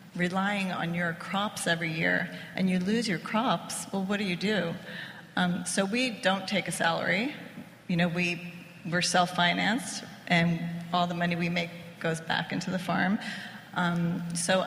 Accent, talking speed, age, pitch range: American, 170 wpm, 40-59, 170-190 Hz